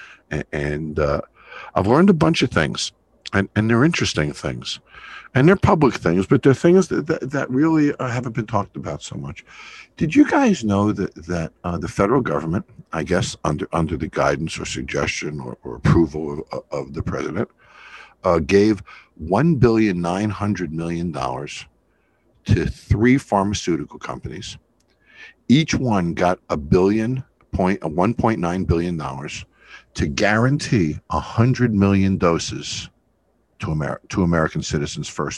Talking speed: 135 wpm